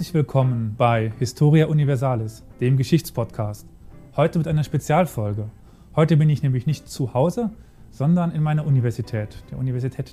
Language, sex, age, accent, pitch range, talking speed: German, male, 30-49, German, 120-155 Hz, 140 wpm